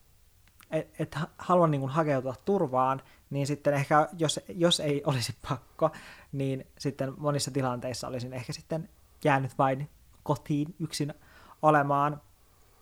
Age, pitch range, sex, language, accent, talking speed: 20-39, 130-155 Hz, male, Finnish, native, 120 wpm